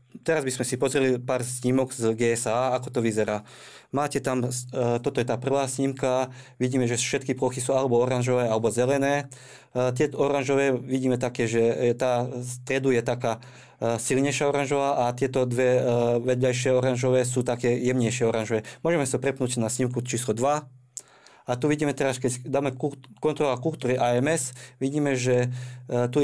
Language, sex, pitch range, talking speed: Slovak, male, 120-135 Hz, 155 wpm